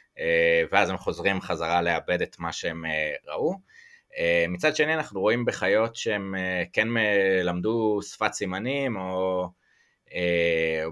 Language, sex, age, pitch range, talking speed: Hebrew, male, 20-39, 90-130 Hz, 115 wpm